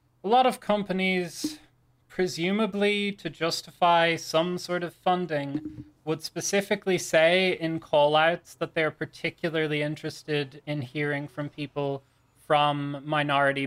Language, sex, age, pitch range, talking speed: English, male, 20-39, 135-160 Hz, 120 wpm